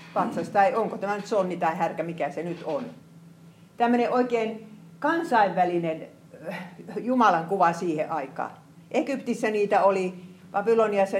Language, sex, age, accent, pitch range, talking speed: Finnish, female, 50-69, native, 165-235 Hz, 125 wpm